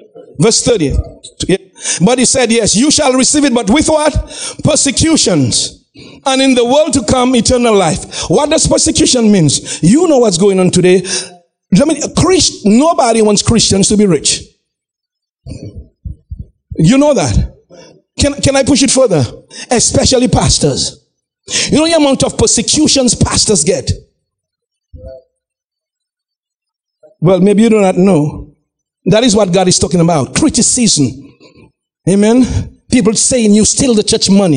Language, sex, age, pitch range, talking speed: English, male, 50-69, 190-265 Hz, 135 wpm